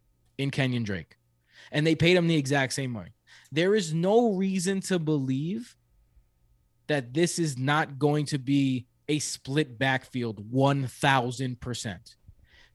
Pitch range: 125-185 Hz